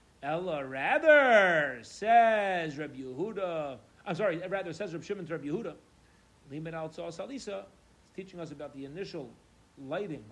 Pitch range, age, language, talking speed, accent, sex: 135-175 Hz, 40-59, English, 110 wpm, American, male